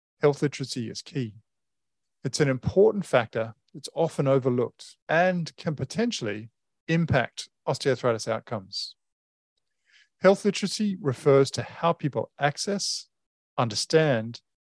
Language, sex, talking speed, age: English, male, 105 wpm, 40-59